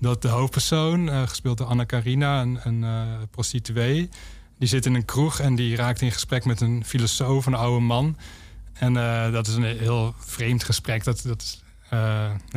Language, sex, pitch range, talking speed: Dutch, male, 115-130 Hz, 190 wpm